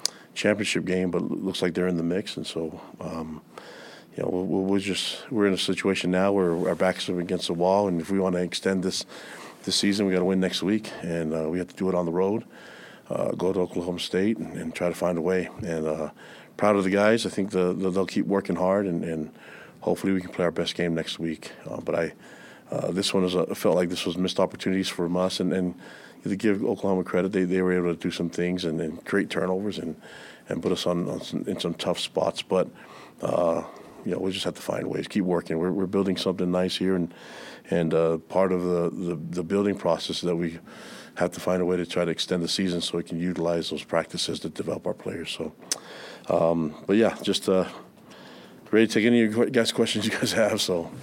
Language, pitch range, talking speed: English, 85-95 Hz, 240 wpm